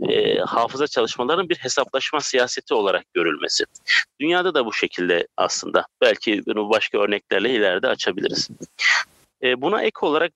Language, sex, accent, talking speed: Turkish, male, native, 120 wpm